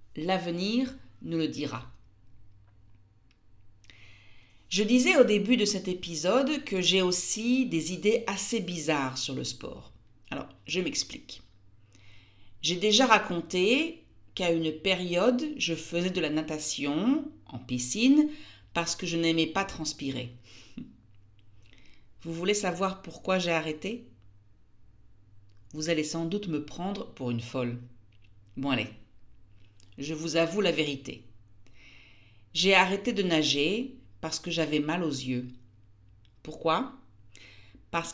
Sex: female